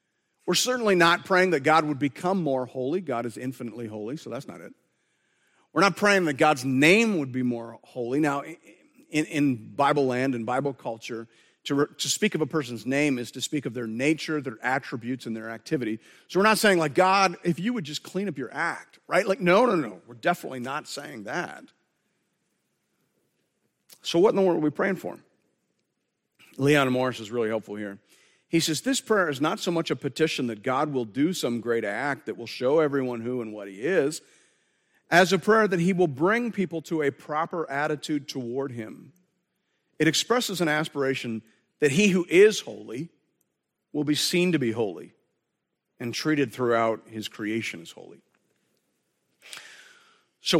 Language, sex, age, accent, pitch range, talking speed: English, male, 40-59, American, 125-175 Hz, 185 wpm